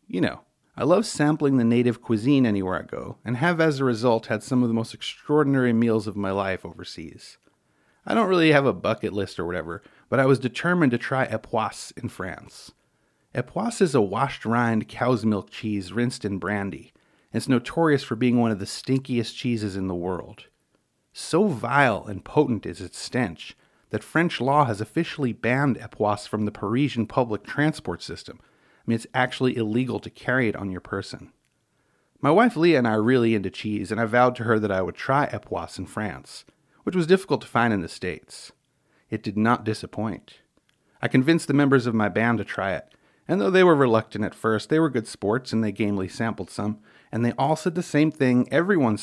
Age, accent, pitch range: 40-59, American, 105-135 Hz